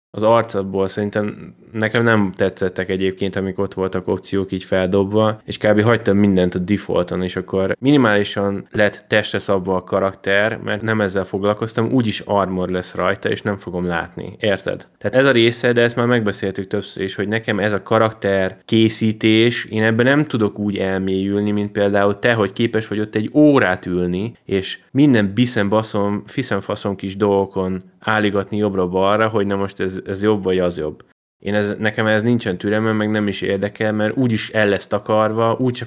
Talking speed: 175 wpm